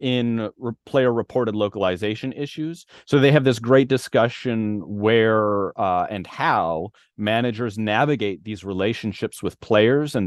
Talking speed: 130 wpm